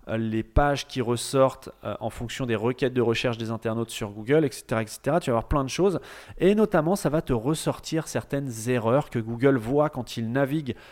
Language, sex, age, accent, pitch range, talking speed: French, male, 30-49, French, 125-160 Hz, 200 wpm